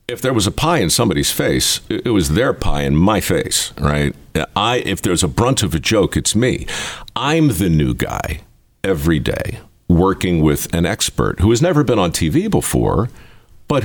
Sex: male